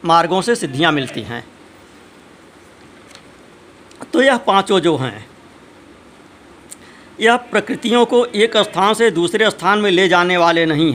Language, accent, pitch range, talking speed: Hindi, native, 170-230 Hz, 125 wpm